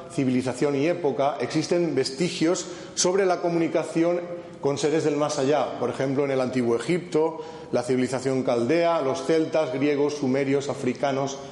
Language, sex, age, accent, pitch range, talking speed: Spanish, male, 40-59, Spanish, 135-160 Hz, 140 wpm